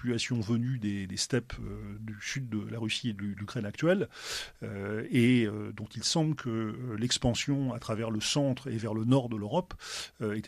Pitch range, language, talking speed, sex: 110-135 Hz, French, 190 wpm, male